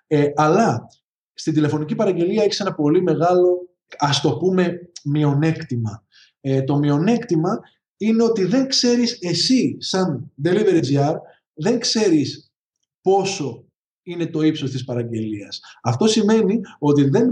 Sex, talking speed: male, 120 wpm